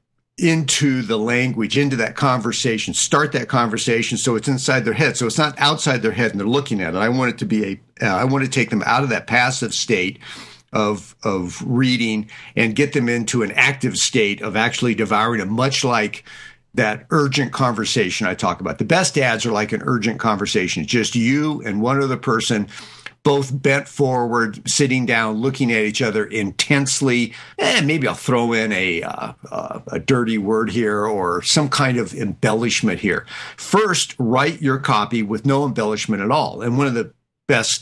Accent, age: American, 50-69